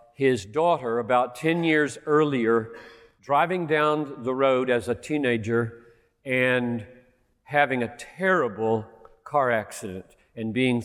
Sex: male